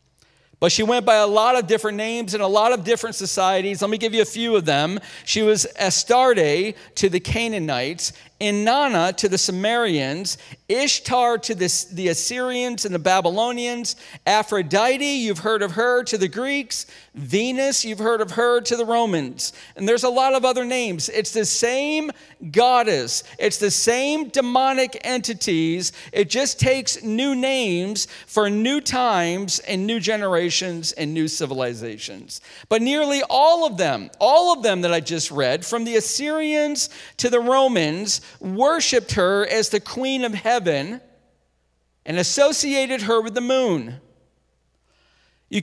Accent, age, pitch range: American, 40-59, 180-250 Hz